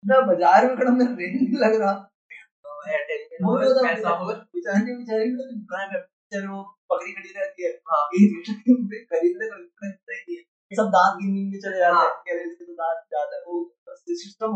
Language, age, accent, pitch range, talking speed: Hindi, 20-39, native, 180-245 Hz, 75 wpm